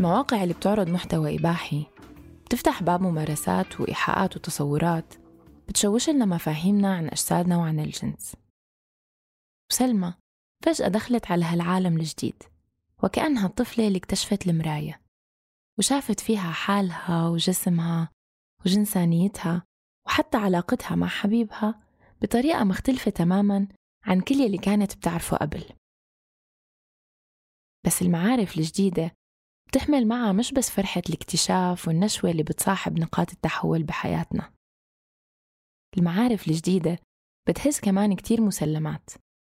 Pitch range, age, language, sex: 170-220 Hz, 20-39, Arabic, female